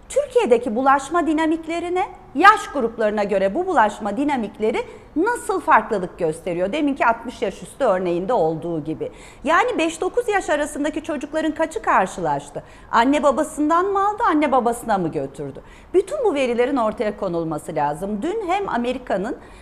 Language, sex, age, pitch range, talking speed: Turkish, female, 40-59, 215-335 Hz, 130 wpm